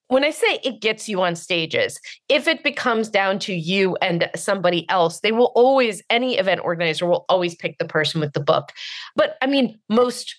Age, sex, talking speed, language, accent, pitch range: 30-49, female, 200 wpm, English, American, 175-220 Hz